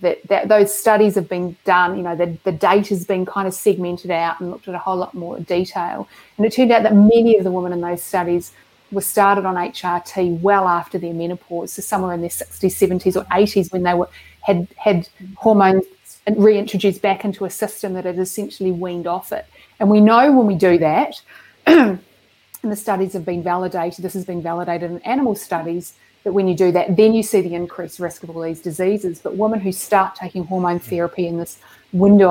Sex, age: female, 30-49